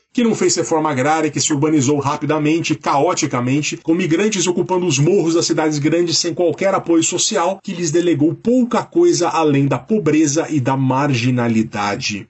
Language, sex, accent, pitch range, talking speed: Portuguese, male, Brazilian, 125-170 Hz, 160 wpm